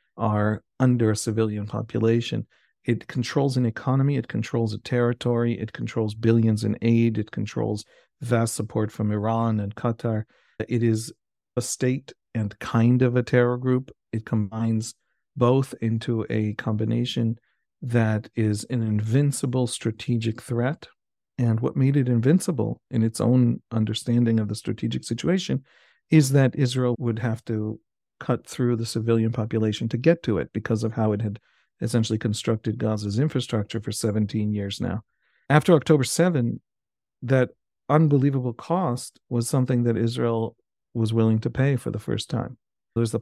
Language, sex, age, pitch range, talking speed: English, male, 50-69, 110-125 Hz, 150 wpm